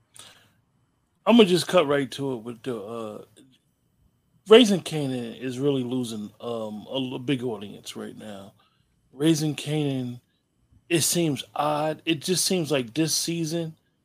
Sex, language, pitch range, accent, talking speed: male, English, 130-155 Hz, American, 135 wpm